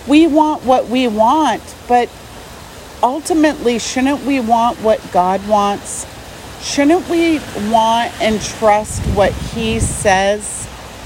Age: 40-59